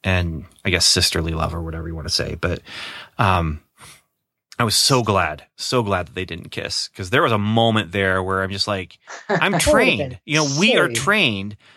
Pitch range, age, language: 105-140 Hz, 30-49, English